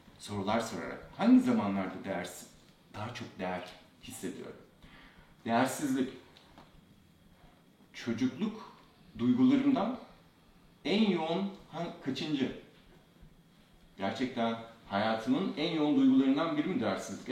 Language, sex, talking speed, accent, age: Turkish, male, 85 wpm, native, 50-69